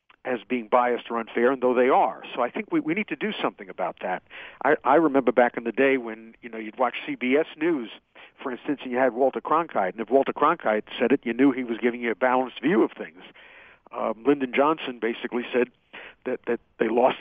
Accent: American